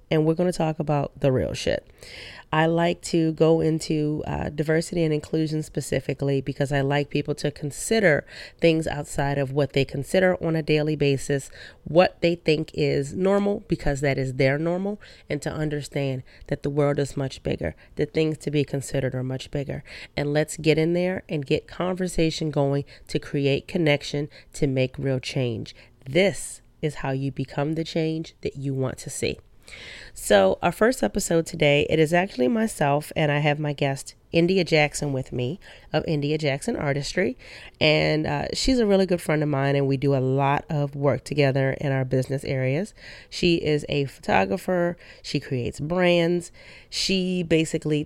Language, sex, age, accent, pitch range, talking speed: English, female, 30-49, American, 140-165 Hz, 175 wpm